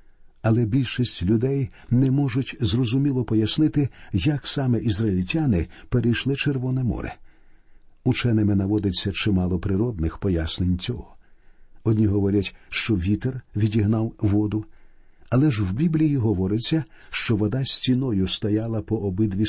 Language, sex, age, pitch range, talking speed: Ukrainian, male, 50-69, 100-130 Hz, 110 wpm